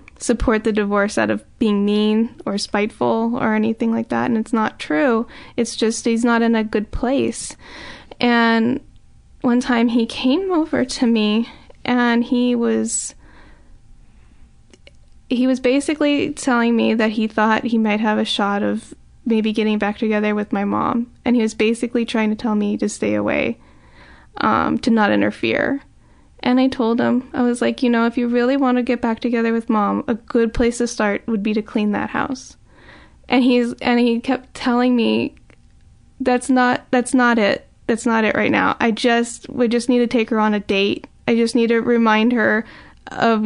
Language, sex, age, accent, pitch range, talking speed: English, female, 10-29, American, 220-245 Hz, 190 wpm